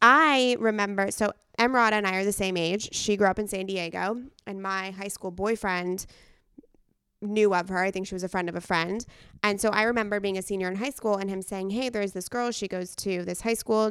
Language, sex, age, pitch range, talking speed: English, female, 20-39, 185-215 Hz, 240 wpm